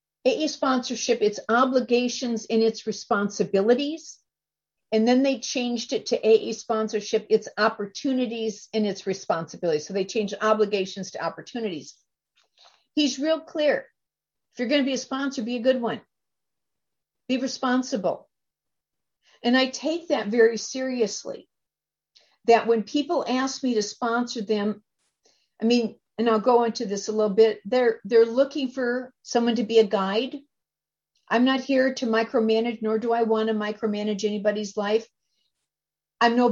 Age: 50-69